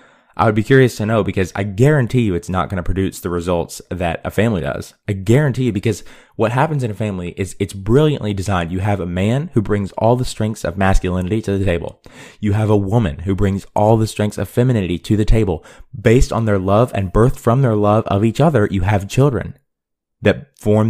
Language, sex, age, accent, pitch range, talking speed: English, male, 20-39, American, 95-110 Hz, 225 wpm